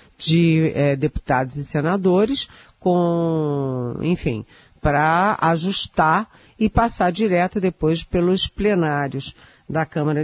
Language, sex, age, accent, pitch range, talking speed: Portuguese, female, 40-59, Brazilian, 150-190 Hz, 100 wpm